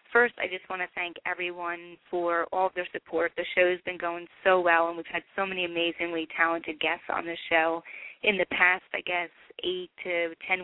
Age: 30-49